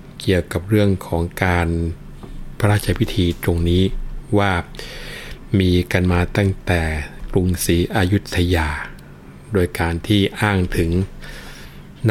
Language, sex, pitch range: Thai, male, 85-100 Hz